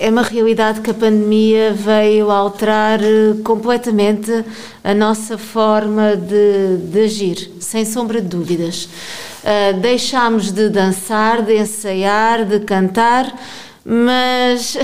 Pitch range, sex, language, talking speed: 205-240 Hz, female, Portuguese, 115 wpm